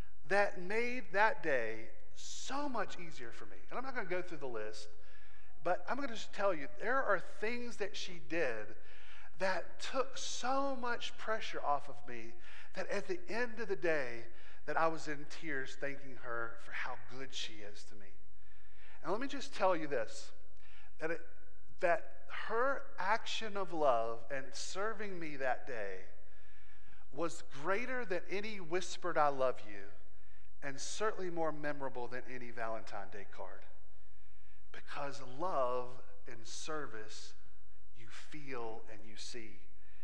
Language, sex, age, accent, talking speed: English, male, 40-59, American, 155 wpm